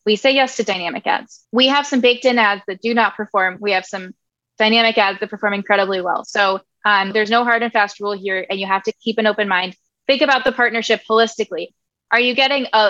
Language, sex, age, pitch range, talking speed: English, female, 20-39, 210-255 Hz, 235 wpm